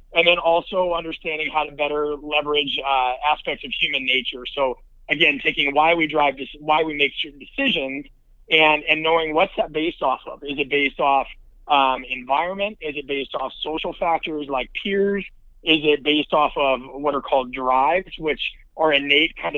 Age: 30-49